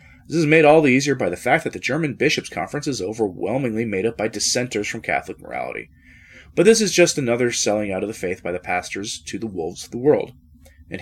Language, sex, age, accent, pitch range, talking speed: English, male, 30-49, American, 100-135 Hz, 235 wpm